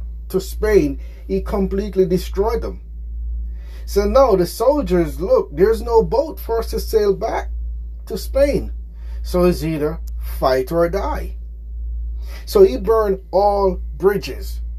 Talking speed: 130 wpm